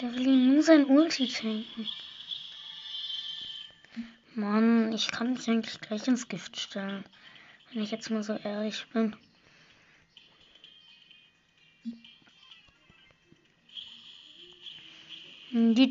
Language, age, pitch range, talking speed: German, 20-39, 215-250 Hz, 90 wpm